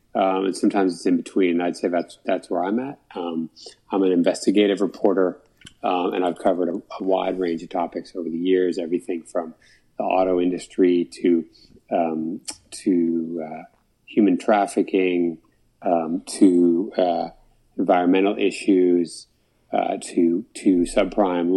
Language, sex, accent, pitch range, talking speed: English, male, American, 90-105 Hz, 140 wpm